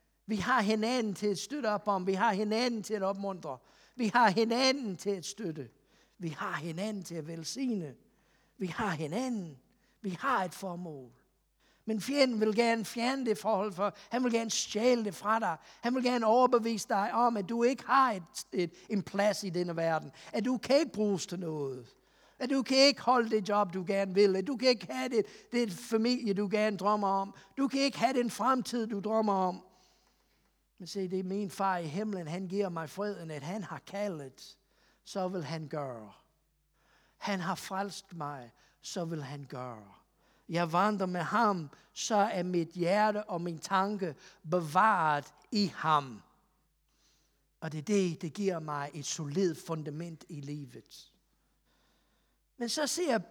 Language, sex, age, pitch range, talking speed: Danish, male, 50-69, 175-230 Hz, 180 wpm